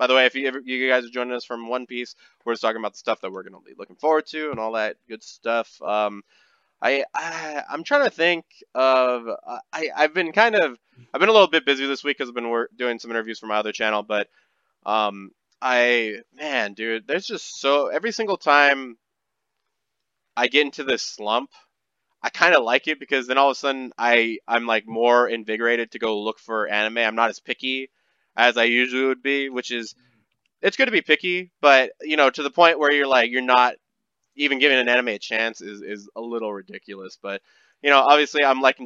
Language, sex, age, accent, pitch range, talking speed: English, male, 20-39, American, 110-135 Hz, 225 wpm